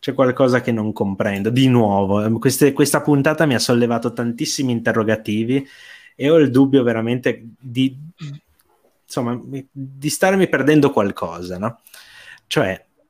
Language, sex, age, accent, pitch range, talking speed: Italian, male, 20-39, native, 100-135 Hz, 130 wpm